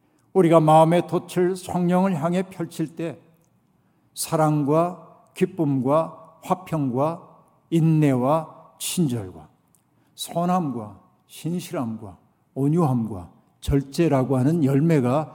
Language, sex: Korean, male